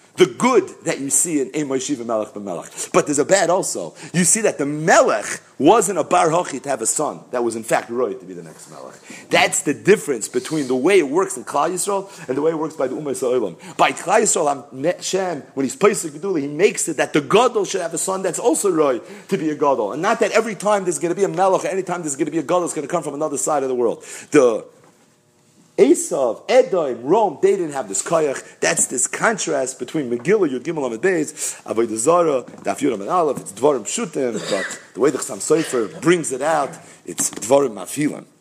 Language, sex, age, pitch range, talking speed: English, male, 40-59, 130-195 Hz, 230 wpm